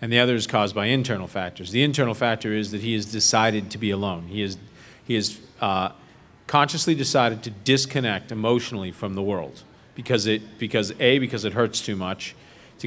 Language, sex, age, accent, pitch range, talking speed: English, male, 40-59, American, 105-130 Hz, 185 wpm